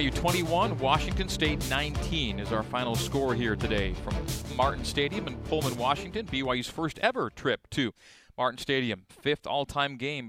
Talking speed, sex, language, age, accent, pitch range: 155 wpm, male, English, 40-59, American, 115-135 Hz